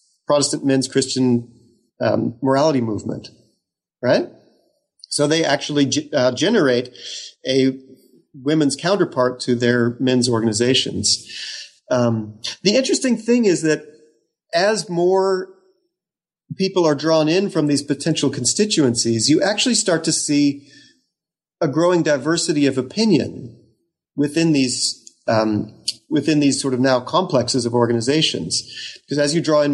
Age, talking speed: 40-59, 125 wpm